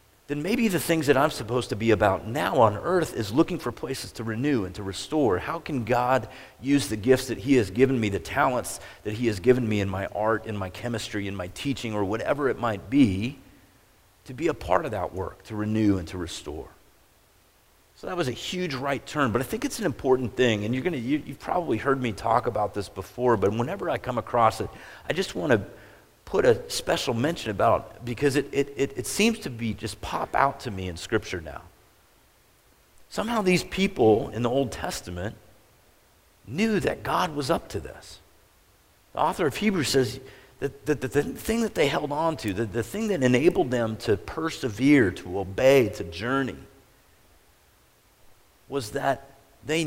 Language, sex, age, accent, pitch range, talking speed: English, male, 40-59, American, 105-140 Hz, 195 wpm